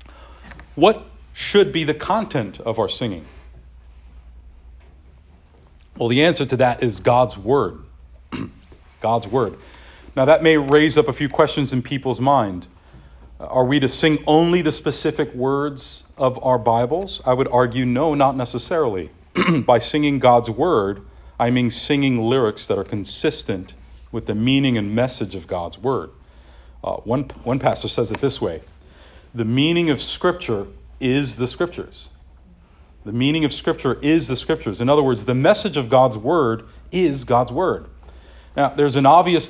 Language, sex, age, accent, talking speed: English, male, 40-59, American, 155 wpm